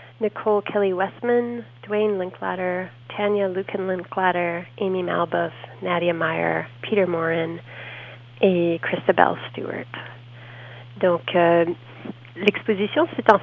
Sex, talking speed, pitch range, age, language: female, 95 wpm, 180-215 Hz, 40-59, French